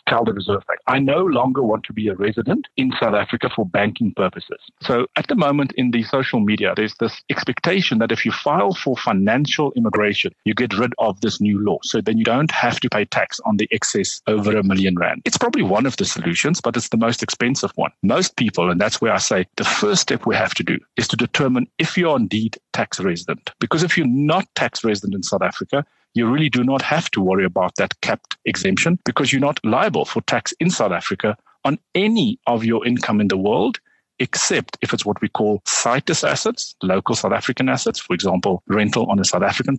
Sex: male